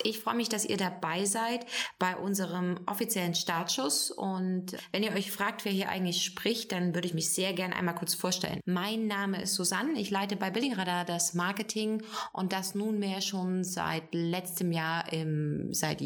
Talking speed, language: 185 wpm, German